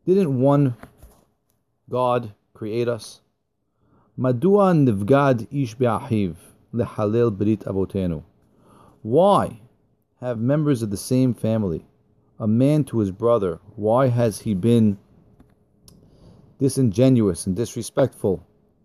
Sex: male